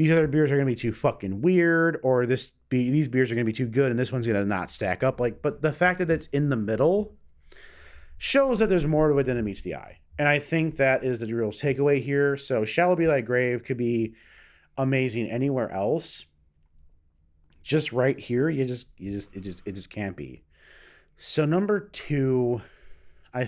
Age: 30-49